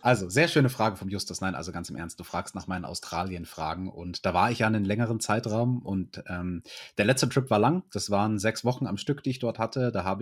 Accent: German